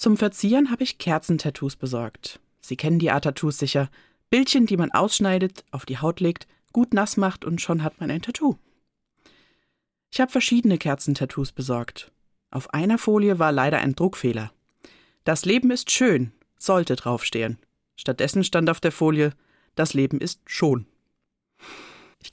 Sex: female